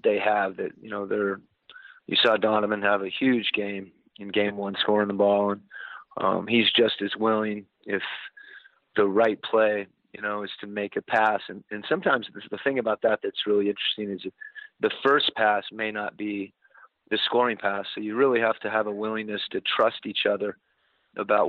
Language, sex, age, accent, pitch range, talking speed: English, male, 40-59, American, 100-110 Hz, 195 wpm